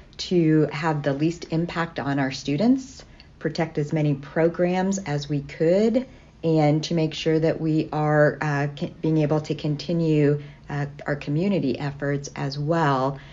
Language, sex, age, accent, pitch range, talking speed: English, female, 50-69, American, 145-170 Hz, 155 wpm